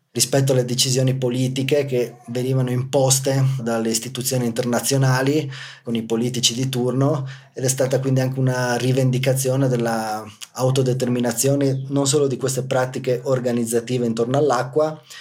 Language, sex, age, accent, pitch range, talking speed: Italian, male, 20-39, native, 120-135 Hz, 120 wpm